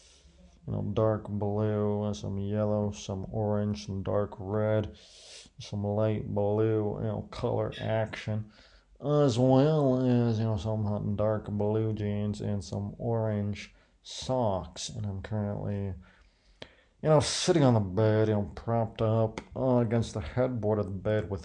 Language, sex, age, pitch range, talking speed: English, male, 40-59, 105-120 Hz, 145 wpm